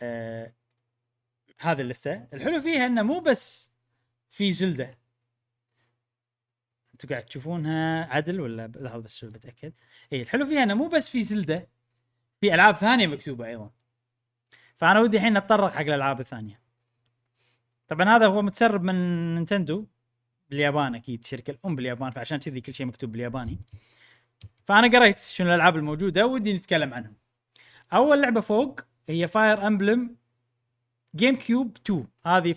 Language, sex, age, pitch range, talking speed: Arabic, male, 20-39, 120-195 Hz, 135 wpm